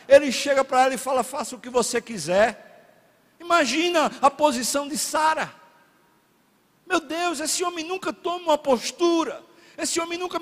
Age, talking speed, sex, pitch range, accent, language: 60-79, 155 wpm, male, 235-315 Hz, Brazilian, Portuguese